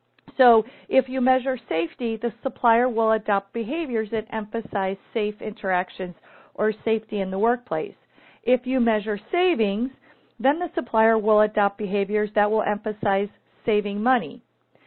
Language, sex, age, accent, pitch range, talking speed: English, female, 50-69, American, 210-255 Hz, 135 wpm